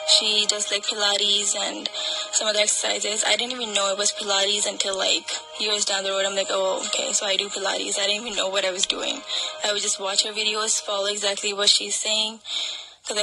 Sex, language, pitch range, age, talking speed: female, English, 200-215 Hz, 10-29, 220 wpm